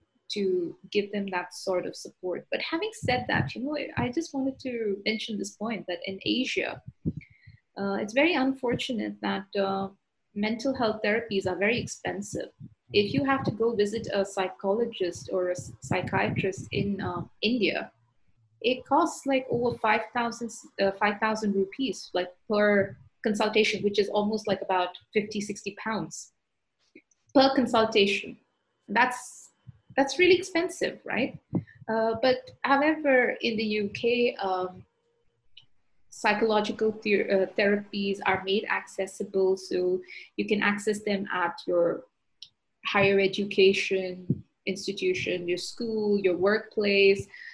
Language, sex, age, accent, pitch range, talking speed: English, female, 30-49, Indian, 195-230 Hz, 130 wpm